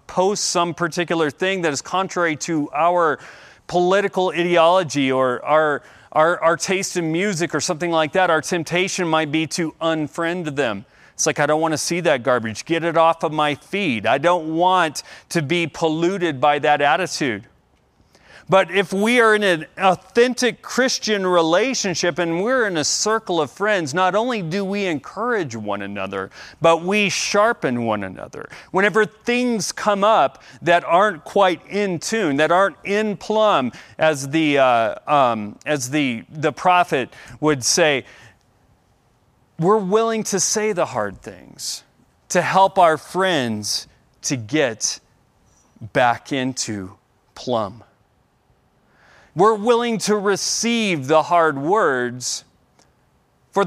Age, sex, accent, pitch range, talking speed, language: 40-59, male, American, 145-190 Hz, 145 wpm, English